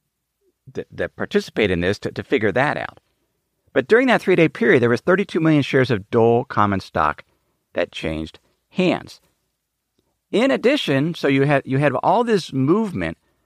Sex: male